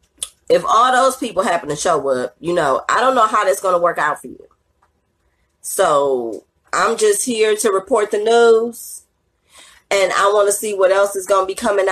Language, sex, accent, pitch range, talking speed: English, female, American, 170-215 Hz, 205 wpm